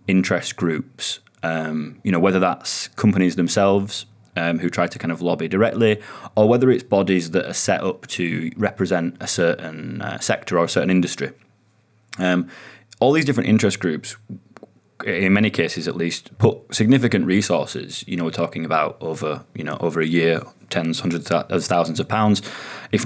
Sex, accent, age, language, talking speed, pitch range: male, British, 20-39, English, 175 wpm, 85-110 Hz